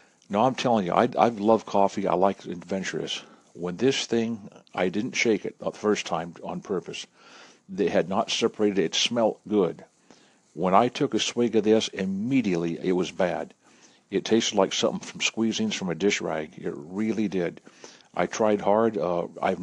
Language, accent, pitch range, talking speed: English, American, 90-115 Hz, 185 wpm